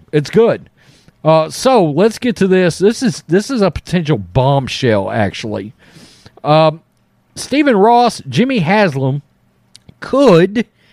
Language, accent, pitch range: English, American, 155-225 Hz